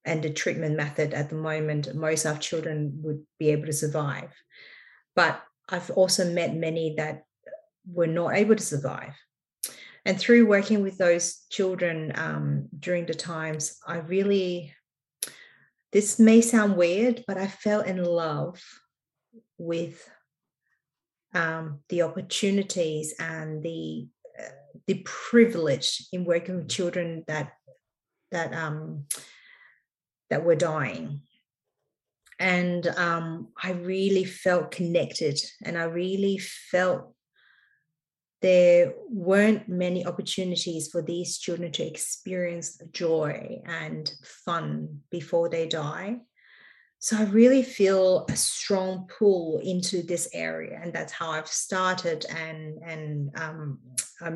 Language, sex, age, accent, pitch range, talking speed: English, female, 30-49, Australian, 155-185 Hz, 120 wpm